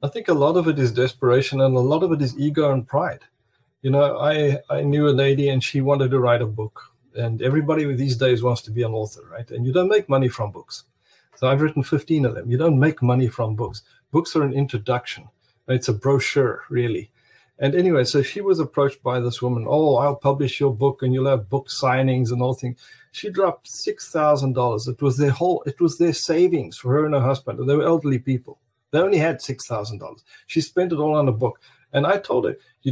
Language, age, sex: English, 50-69, male